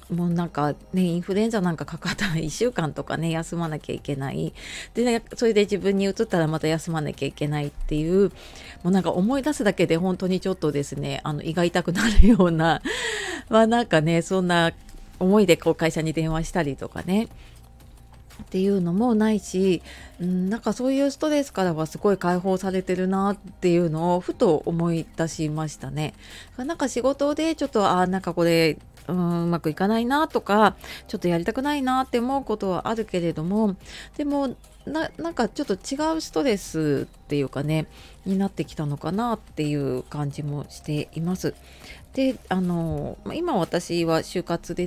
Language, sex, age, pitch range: Japanese, female, 30-49, 160-225 Hz